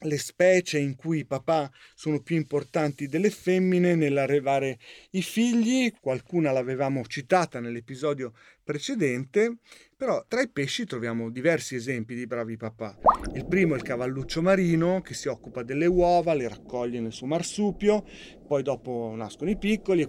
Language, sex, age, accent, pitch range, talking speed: Italian, male, 40-59, native, 130-175 Hz, 150 wpm